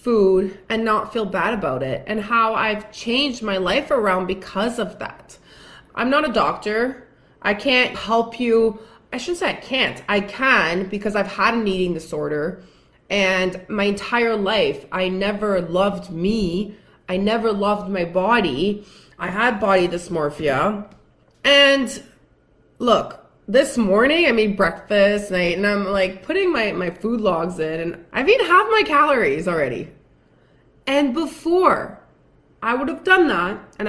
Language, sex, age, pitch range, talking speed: English, female, 20-39, 190-240 Hz, 155 wpm